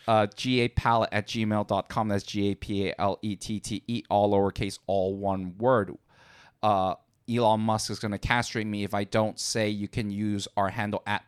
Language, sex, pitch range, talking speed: English, male, 100-115 Hz, 200 wpm